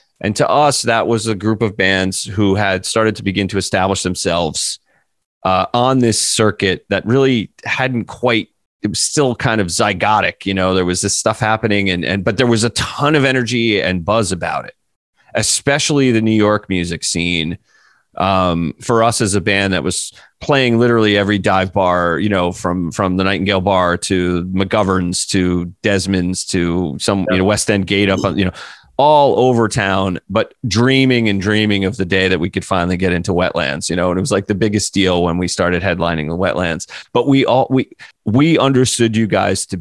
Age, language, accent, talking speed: 30-49, English, American, 200 wpm